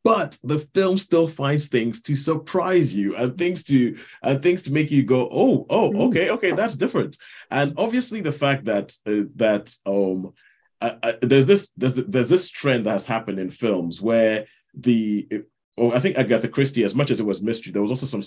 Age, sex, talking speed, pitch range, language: 30-49, male, 205 wpm, 105-135 Hz, English